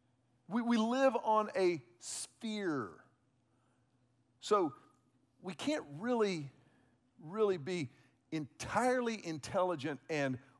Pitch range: 130-190 Hz